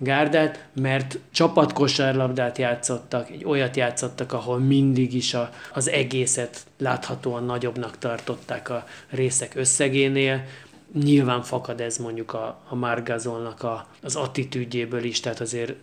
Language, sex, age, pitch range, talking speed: Hungarian, male, 30-49, 120-145 Hz, 120 wpm